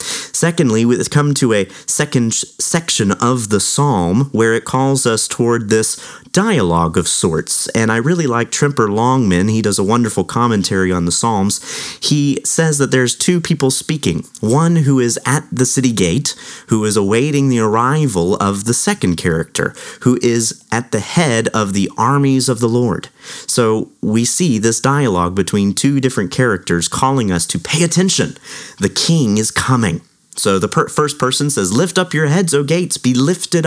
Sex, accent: male, American